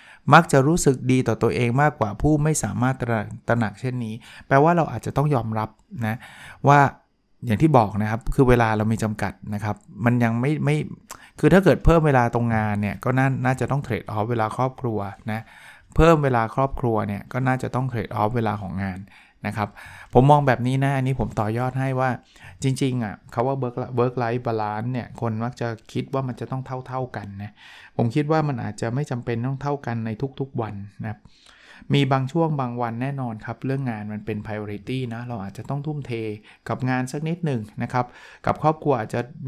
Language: Thai